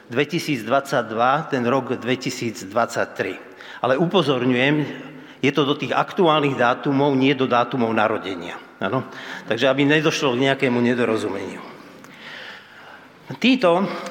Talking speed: 100 wpm